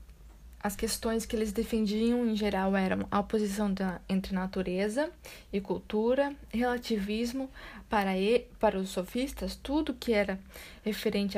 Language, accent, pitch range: Portuguese, Brazilian, 190-230 Hz